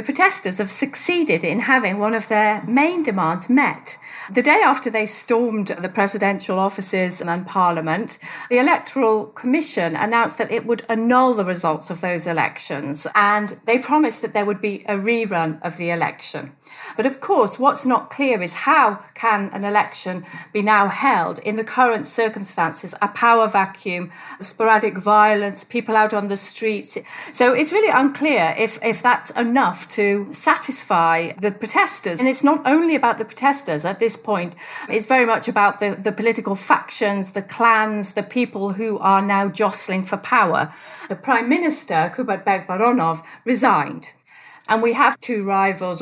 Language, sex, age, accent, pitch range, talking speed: English, female, 40-59, British, 195-245 Hz, 165 wpm